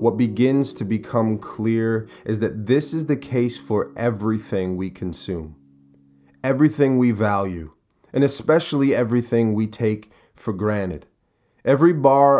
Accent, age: American, 30-49